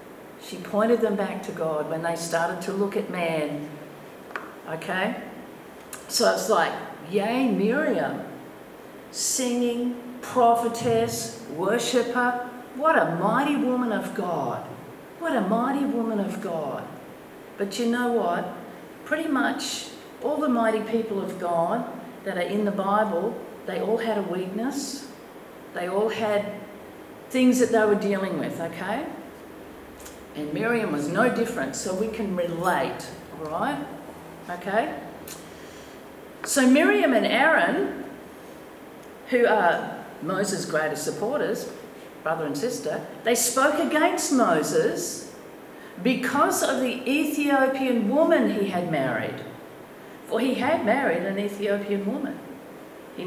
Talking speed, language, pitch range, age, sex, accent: 125 wpm, English, 195-250 Hz, 50-69, female, Australian